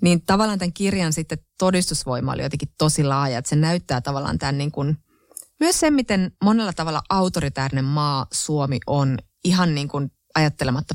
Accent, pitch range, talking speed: native, 145-180 Hz, 155 wpm